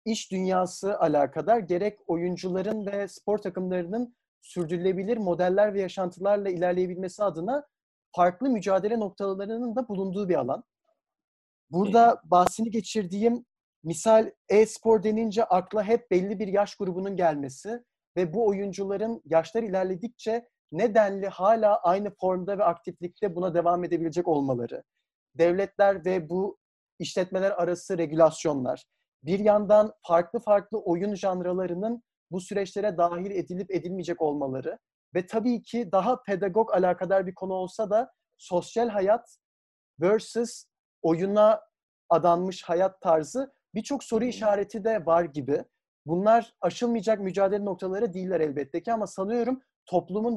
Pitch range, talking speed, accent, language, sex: 180-225 Hz, 120 wpm, native, Turkish, male